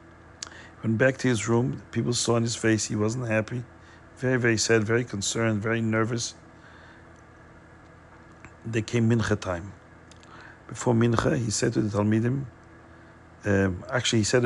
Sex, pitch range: male, 100-125 Hz